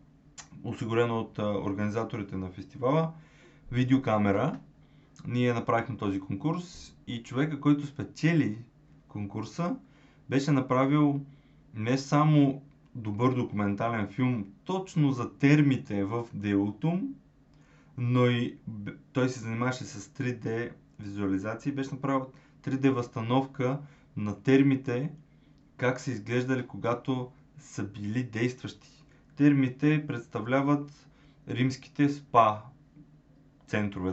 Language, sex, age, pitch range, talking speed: Bulgarian, male, 20-39, 115-145 Hz, 90 wpm